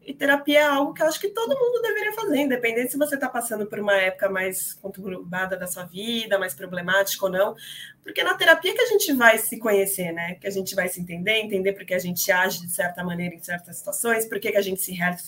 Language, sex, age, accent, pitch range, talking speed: Portuguese, female, 20-39, Brazilian, 185-225 Hz, 250 wpm